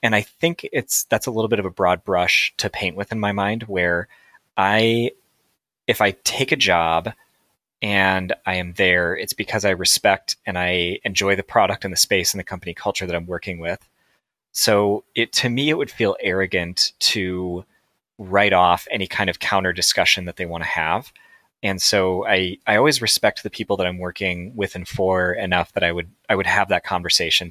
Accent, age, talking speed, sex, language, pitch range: American, 30-49, 205 wpm, male, English, 85-100 Hz